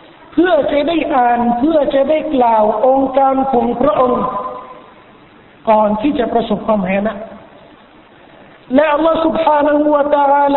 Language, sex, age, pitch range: Thai, male, 50-69, 275-310 Hz